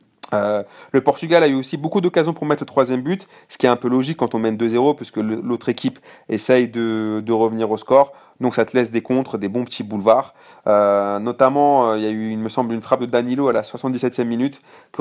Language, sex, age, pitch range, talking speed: French, male, 30-49, 105-140 Hz, 245 wpm